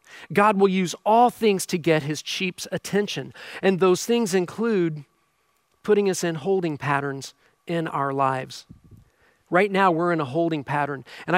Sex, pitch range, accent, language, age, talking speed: male, 160-205 Hz, American, English, 40-59, 160 wpm